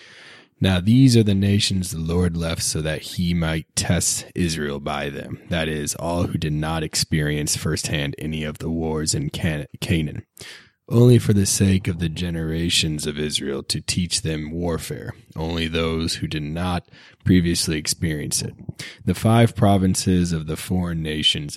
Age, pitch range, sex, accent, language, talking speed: 20-39, 75-90 Hz, male, American, English, 160 wpm